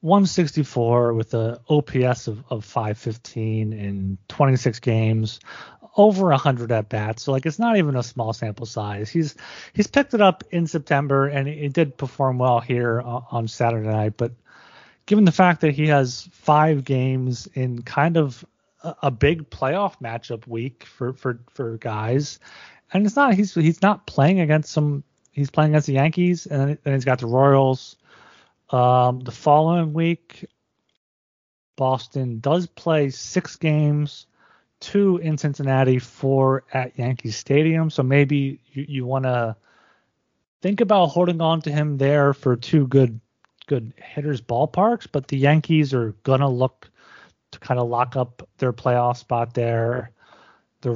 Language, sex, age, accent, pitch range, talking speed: English, male, 30-49, American, 120-150 Hz, 155 wpm